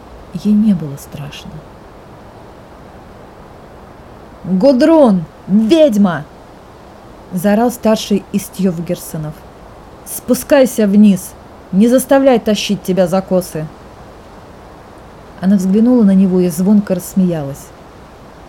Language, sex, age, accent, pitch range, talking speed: Russian, female, 30-49, native, 190-280 Hz, 80 wpm